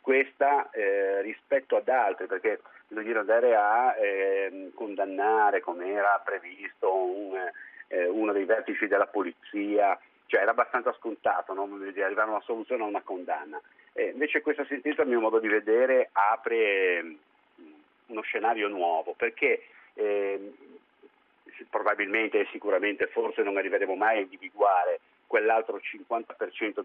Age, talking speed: 40-59, 135 wpm